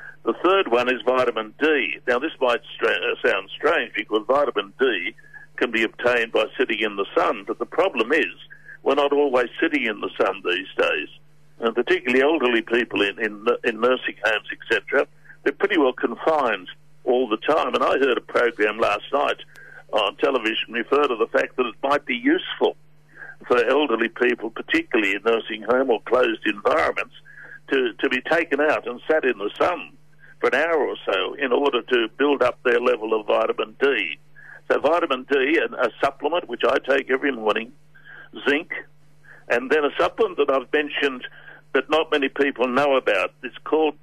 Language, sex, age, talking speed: English, male, 60-79, 180 wpm